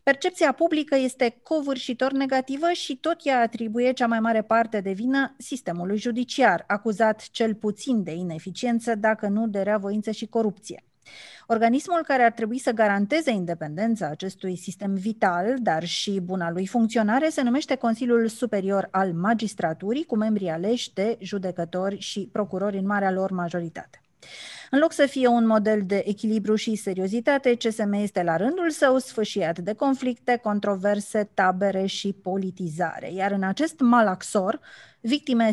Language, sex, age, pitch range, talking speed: Romanian, female, 30-49, 195-250 Hz, 145 wpm